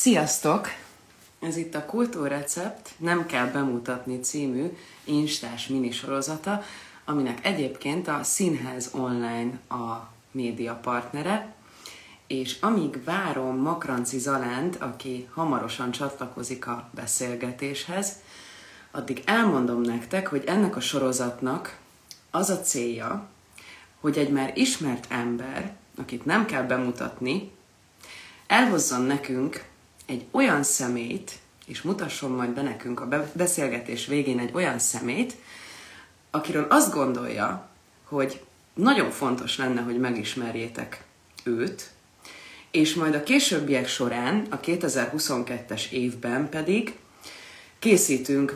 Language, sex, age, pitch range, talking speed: Hungarian, female, 30-49, 125-160 Hz, 105 wpm